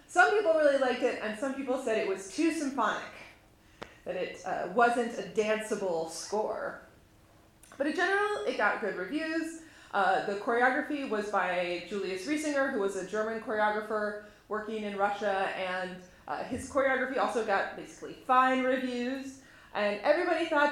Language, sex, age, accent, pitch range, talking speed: English, female, 30-49, American, 205-290 Hz, 155 wpm